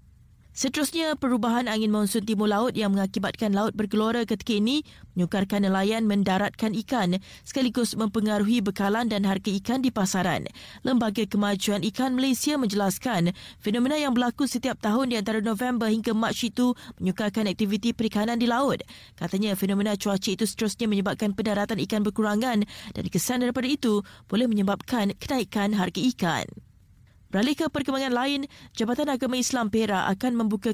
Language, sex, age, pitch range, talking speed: Malay, female, 20-39, 205-250 Hz, 140 wpm